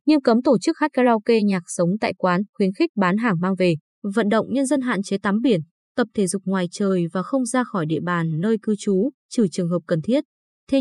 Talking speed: 245 wpm